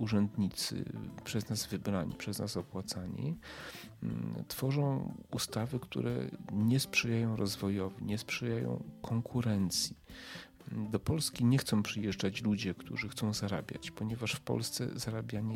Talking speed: 110 wpm